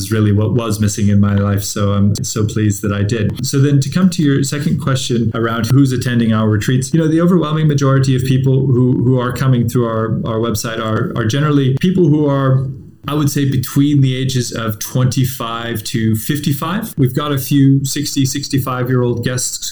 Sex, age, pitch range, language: male, 30-49, 110-135 Hz, English